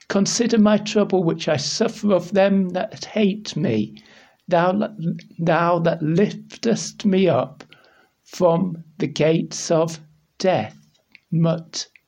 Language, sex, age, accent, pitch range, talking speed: English, male, 60-79, British, 155-210 Hz, 115 wpm